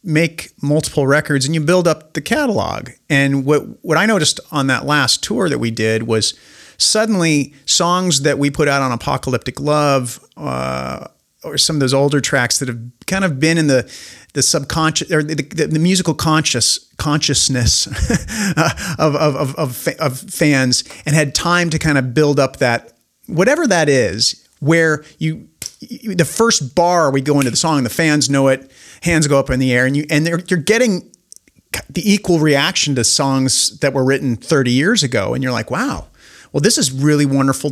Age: 40-59